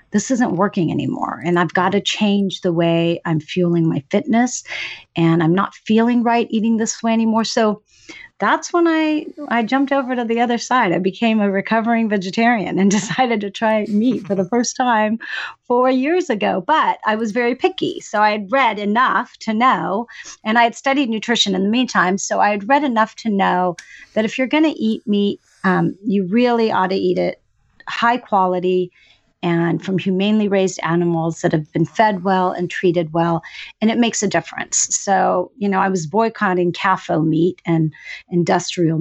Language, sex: English, female